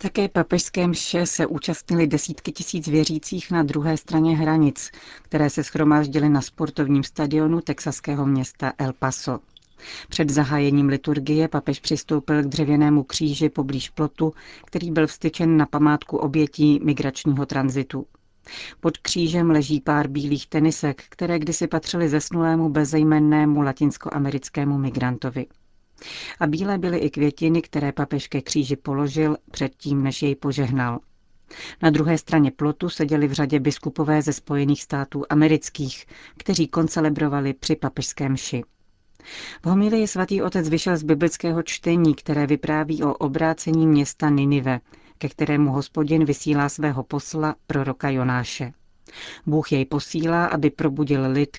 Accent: native